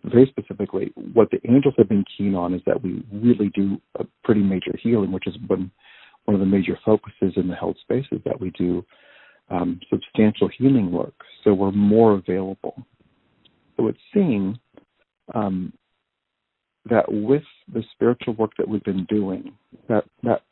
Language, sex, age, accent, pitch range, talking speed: English, male, 50-69, American, 95-110 Hz, 160 wpm